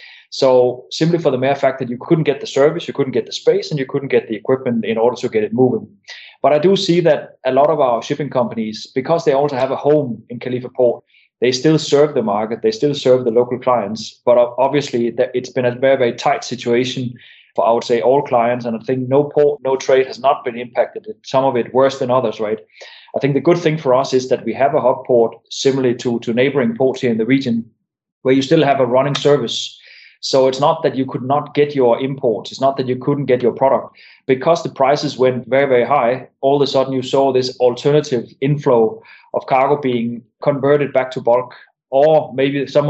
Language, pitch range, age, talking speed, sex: English, 120-145 Hz, 20-39, 235 wpm, male